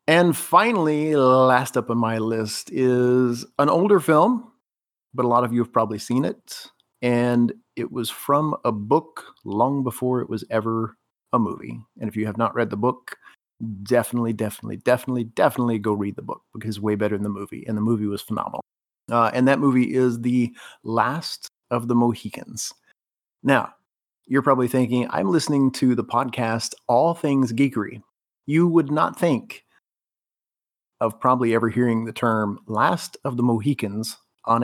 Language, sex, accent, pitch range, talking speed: English, male, American, 115-130 Hz, 170 wpm